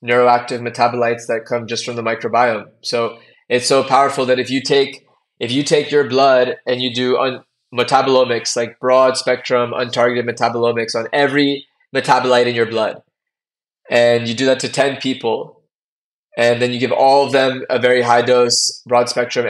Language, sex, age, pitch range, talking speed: English, male, 20-39, 120-135 Hz, 175 wpm